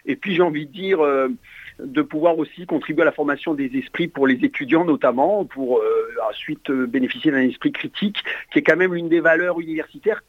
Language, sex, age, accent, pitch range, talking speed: French, male, 50-69, French, 165-245 Hz, 210 wpm